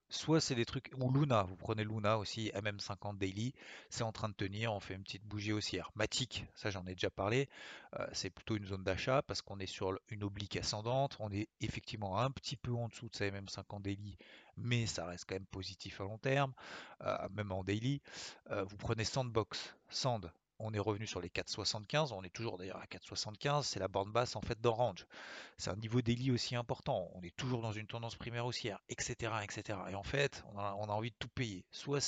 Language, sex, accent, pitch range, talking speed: French, male, French, 100-120 Hz, 225 wpm